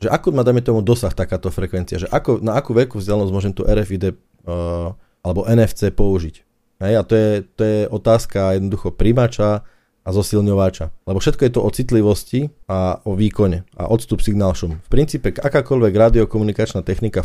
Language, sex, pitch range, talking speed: Slovak, male, 95-120 Hz, 175 wpm